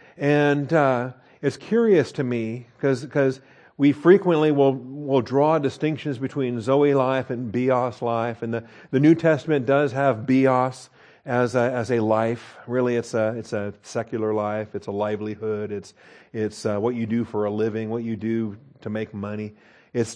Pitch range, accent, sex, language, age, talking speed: 110-135 Hz, American, male, English, 50-69, 175 wpm